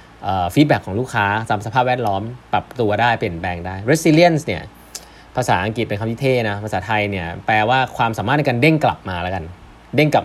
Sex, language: male, Thai